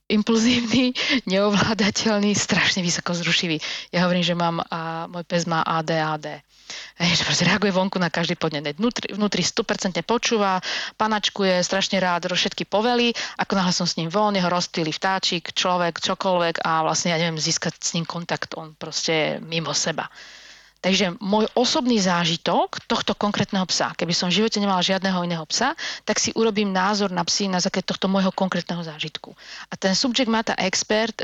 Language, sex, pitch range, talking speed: Slovak, female, 175-220 Hz, 160 wpm